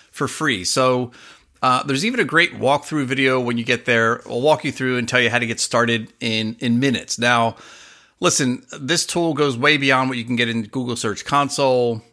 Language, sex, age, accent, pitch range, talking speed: English, male, 30-49, American, 120-150 Hz, 215 wpm